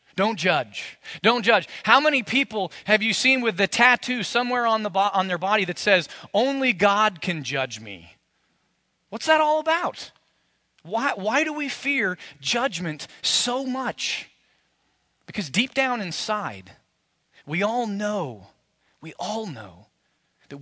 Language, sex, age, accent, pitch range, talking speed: English, male, 30-49, American, 160-235 Hz, 145 wpm